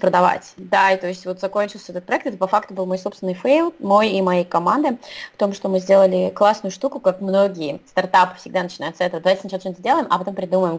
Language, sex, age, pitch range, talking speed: Russian, female, 20-39, 180-220 Hz, 230 wpm